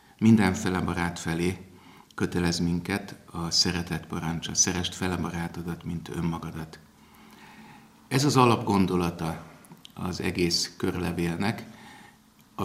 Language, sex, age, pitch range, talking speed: Hungarian, male, 50-69, 85-105 Hz, 90 wpm